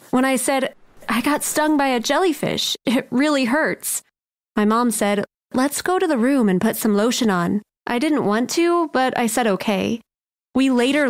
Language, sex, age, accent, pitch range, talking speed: English, female, 20-39, American, 220-280 Hz, 190 wpm